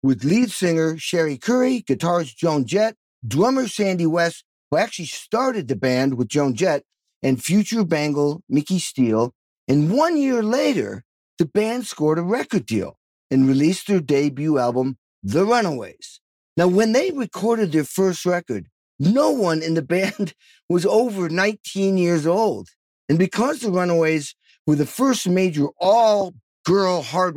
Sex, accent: male, American